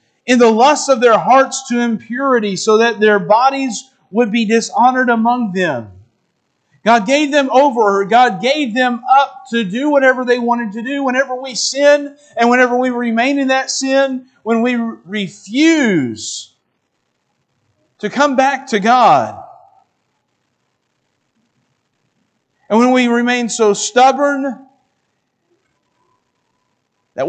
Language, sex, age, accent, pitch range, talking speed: English, male, 50-69, American, 210-260 Hz, 125 wpm